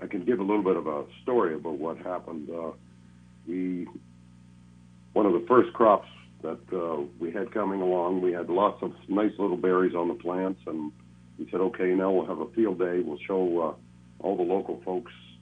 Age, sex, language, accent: 60-79, male, English, American